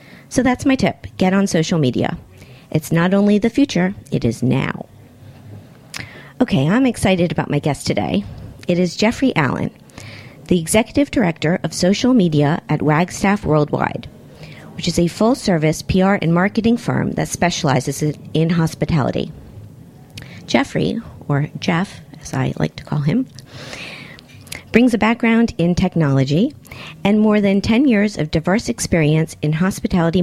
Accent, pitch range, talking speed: American, 150-205 Hz, 145 wpm